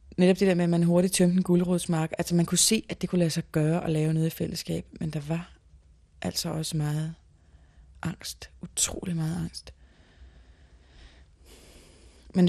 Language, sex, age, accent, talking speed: Danish, female, 30-49, native, 170 wpm